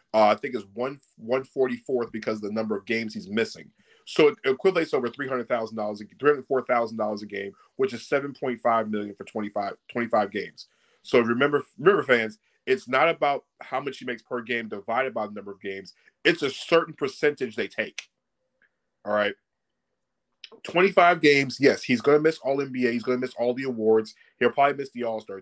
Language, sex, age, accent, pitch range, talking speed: English, male, 30-49, American, 115-145 Hz, 185 wpm